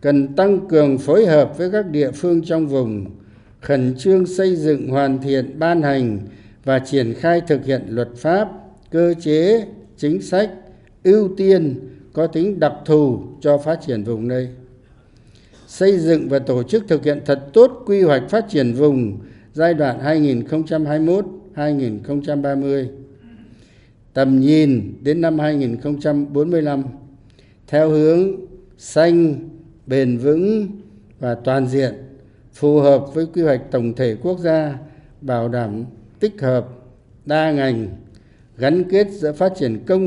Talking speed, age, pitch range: 140 wpm, 60-79, 125-165 Hz